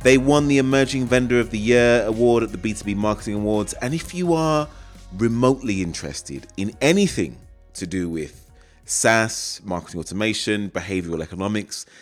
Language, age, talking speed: English, 30-49, 150 wpm